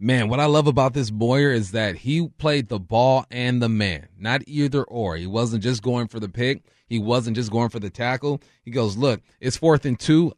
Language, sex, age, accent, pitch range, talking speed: English, male, 30-49, American, 110-140 Hz, 230 wpm